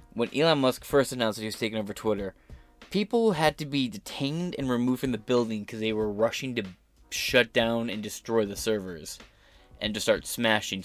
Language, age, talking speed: English, 20-39, 200 wpm